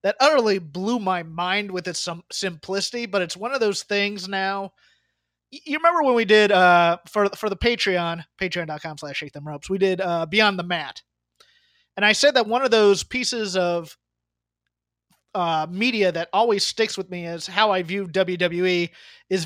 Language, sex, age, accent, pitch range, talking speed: English, male, 30-49, American, 175-230 Hz, 175 wpm